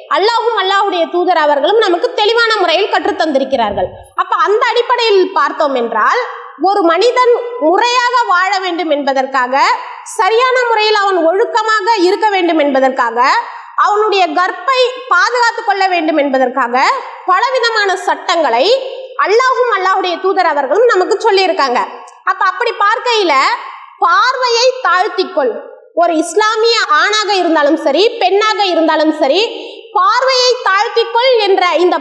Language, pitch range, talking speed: English, 335-460 Hz, 105 wpm